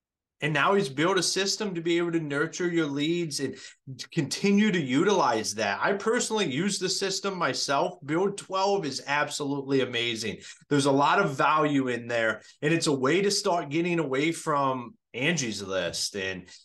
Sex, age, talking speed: male, 30-49, 175 wpm